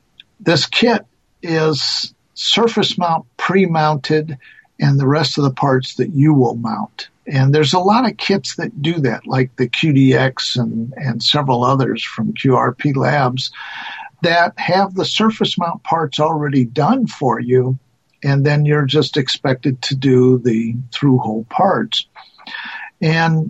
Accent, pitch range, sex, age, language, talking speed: American, 130-160 Hz, male, 50-69, English, 145 wpm